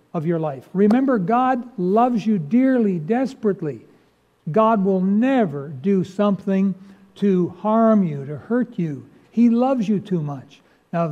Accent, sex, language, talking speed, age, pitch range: American, male, English, 140 wpm, 60-79, 155-215 Hz